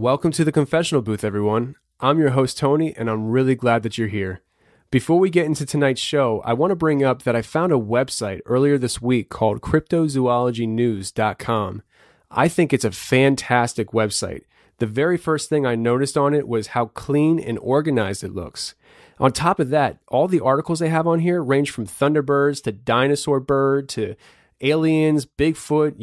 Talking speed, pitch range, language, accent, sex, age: 180 wpm, 115-145 Hz, English, American, male, 30-49